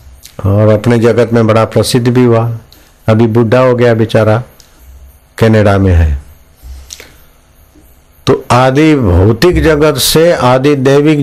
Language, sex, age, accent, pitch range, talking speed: Hindi, male, 60-79, native, 100-145 Hz, 125 wpm